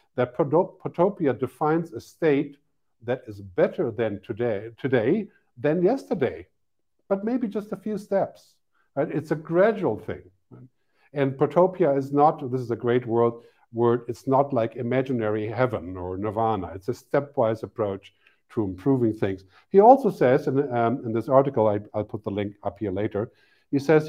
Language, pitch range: English, 110-150 Hz